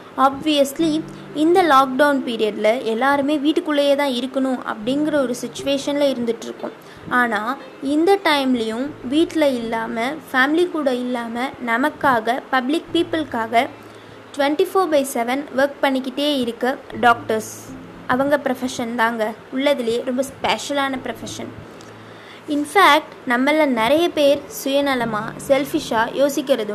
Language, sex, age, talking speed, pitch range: Tamil, female, 20-39, 100 wpm, 240-295 Hz